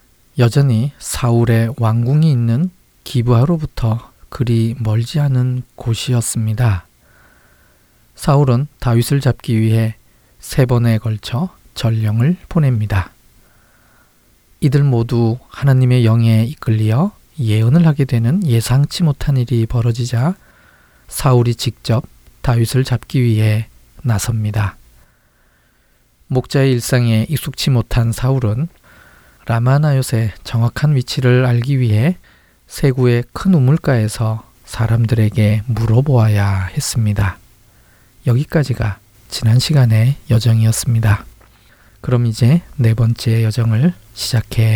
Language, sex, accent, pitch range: Korean, male, native, 110-135 Hz